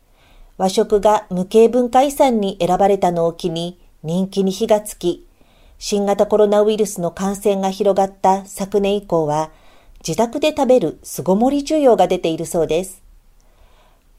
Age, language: 40-59, Japanese